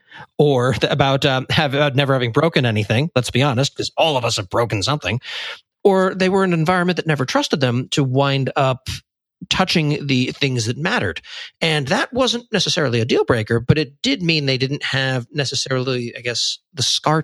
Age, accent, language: 40-59, American, English